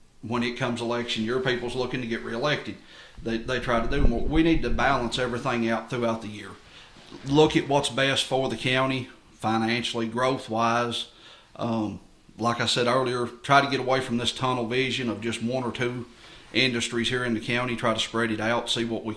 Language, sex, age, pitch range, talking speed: English, male, 40-59, 115-130 Hz, 200 wpm